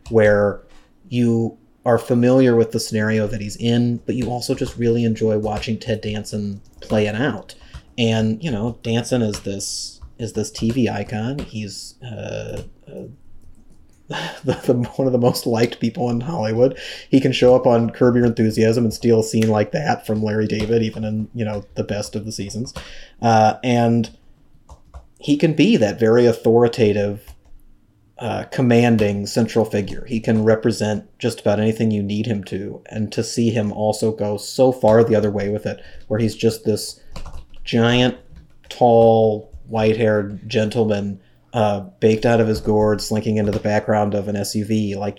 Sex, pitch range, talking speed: male, 105-120 Hz, 170 wpm